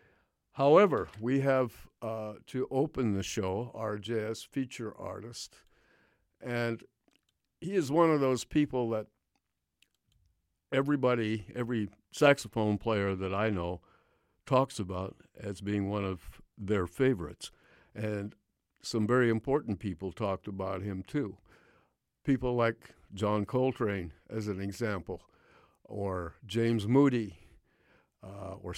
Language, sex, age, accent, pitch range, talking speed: English, male, 60-79, American, 95-120 Hz, 115 wpm